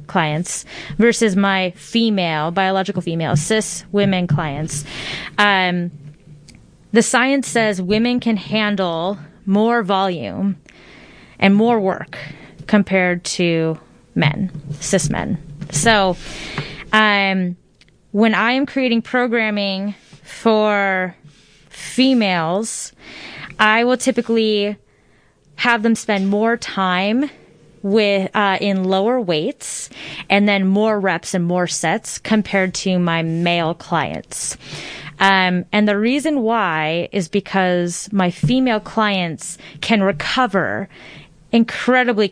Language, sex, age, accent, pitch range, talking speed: English, female, 20-39, American, 170-220 Hz, 105 wpm